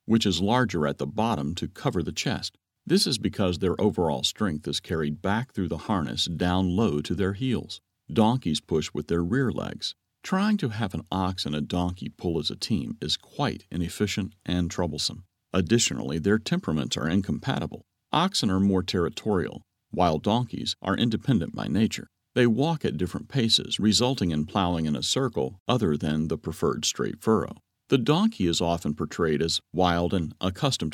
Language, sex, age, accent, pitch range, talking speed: English, male, 50-69, American, 85-110 Hz, 175 wpm